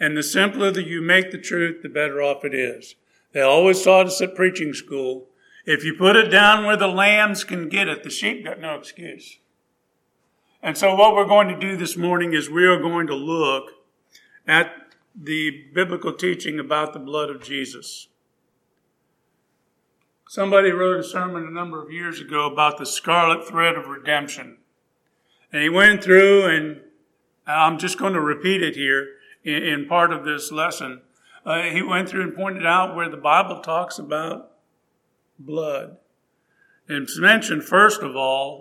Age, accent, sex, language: 50-69, American, male, English